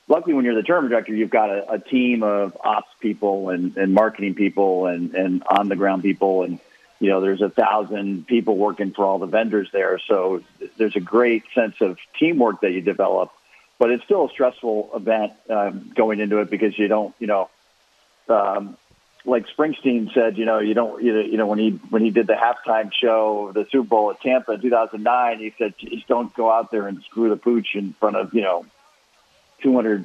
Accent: American